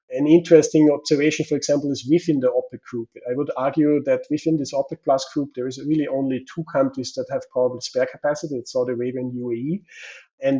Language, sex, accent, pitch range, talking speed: English, male, German, 130-155 Hz, 200 wpm